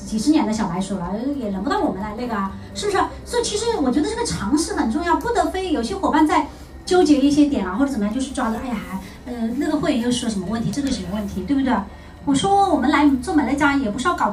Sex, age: male, 30-49